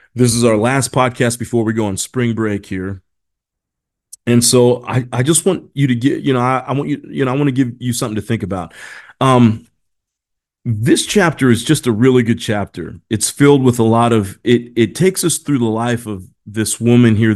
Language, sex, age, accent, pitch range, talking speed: English, male, 40-59, American, 105-125 Hz, 220 wpm